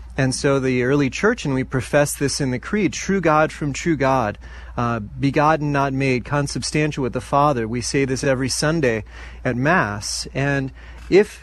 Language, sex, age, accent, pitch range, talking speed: English, male, 30-49, American, 125-155 Hz, 180 wpm